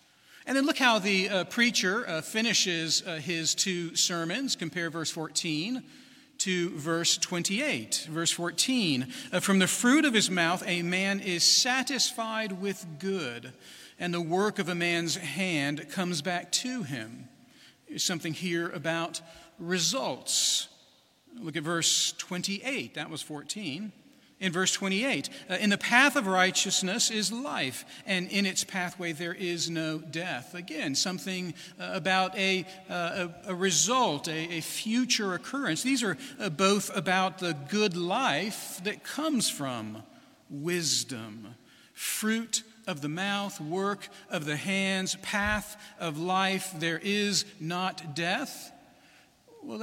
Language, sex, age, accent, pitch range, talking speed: English, male, 40-59, American, 170-220 Hz, 130 wpm